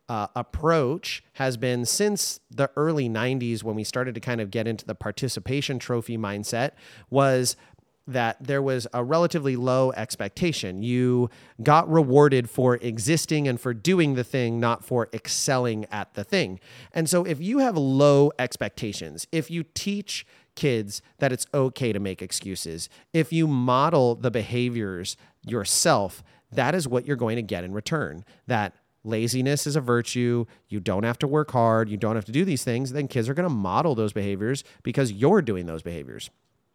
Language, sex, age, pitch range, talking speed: English, male, 30-49, 115-140 Hz, 175 wpm